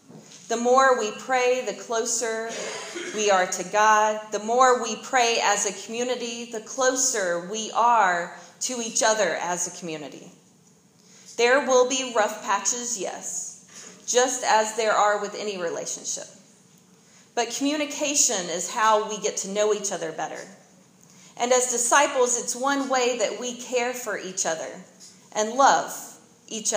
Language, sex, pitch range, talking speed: English, female, 195-245 Hz, 150 wpm